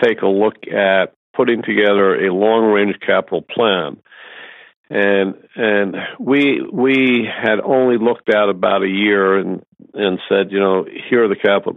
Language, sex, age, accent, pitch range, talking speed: English, male, 50-69, American, 95-115 Hz, 155 wpm